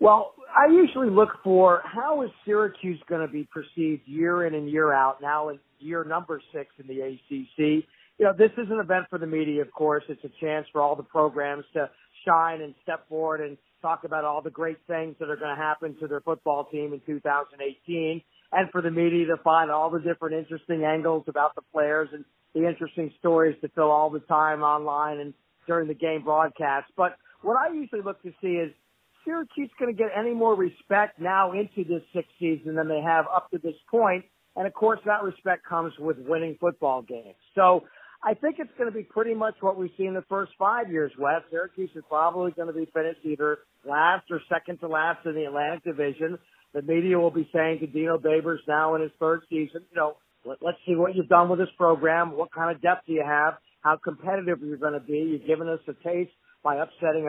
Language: English